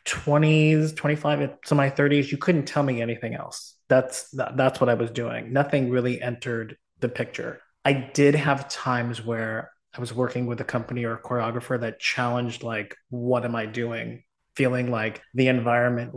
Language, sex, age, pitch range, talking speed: English, male, 20-39, 120-135 Hz, 180 wpm